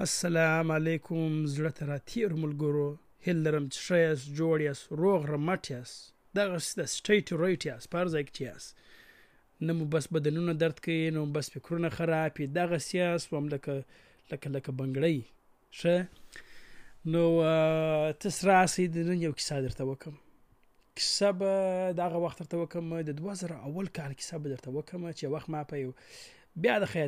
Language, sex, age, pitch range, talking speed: Urdu, male, 30-49, 145-180 Hz, 35 wpm